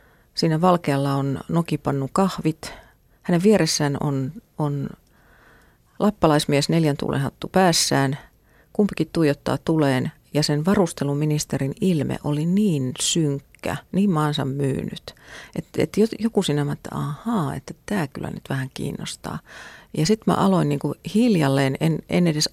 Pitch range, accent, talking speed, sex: 140-180 Hz, native, 130 wpm, female